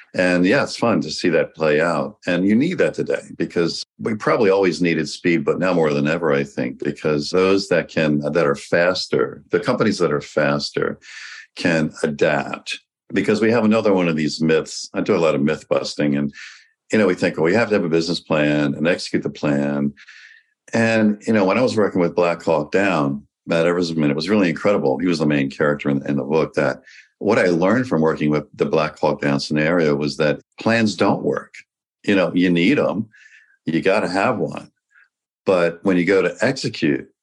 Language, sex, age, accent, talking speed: English, male, 50-69, American, 210 wpm